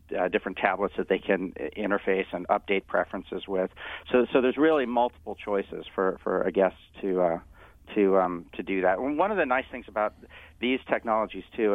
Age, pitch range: 40-59, 95-110 Hz